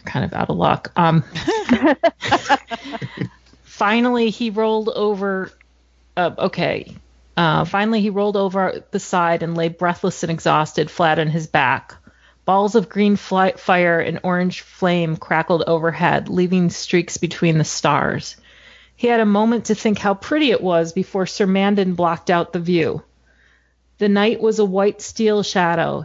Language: English